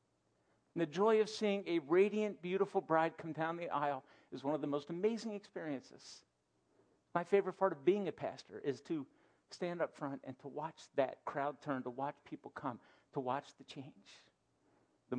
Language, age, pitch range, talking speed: English, 50-69, 165-230 Hz, 185 wpm